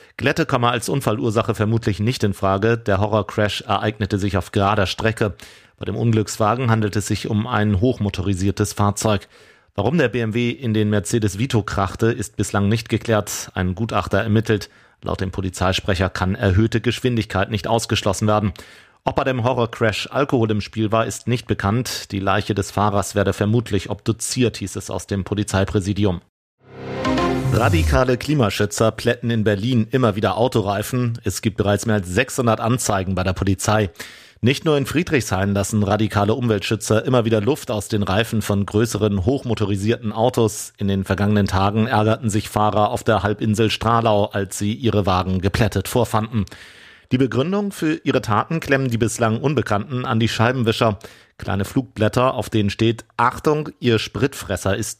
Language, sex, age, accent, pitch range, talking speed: German, male, 40-59, German, 100-120 Hz, 155 wpm